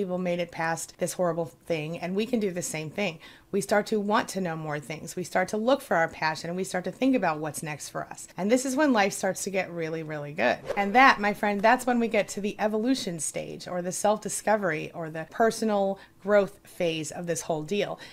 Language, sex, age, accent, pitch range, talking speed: English, female, 30-49, American, 175-225 Hz, 240 wpm